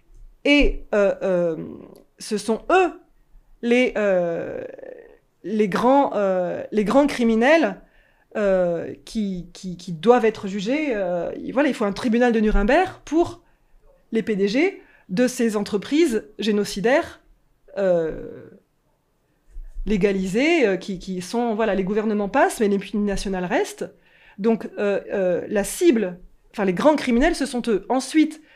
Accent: French